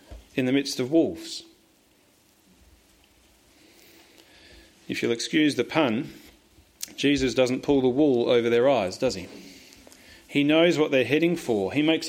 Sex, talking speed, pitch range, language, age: male, 140 wpm, 120-160 Hz, English, 40-59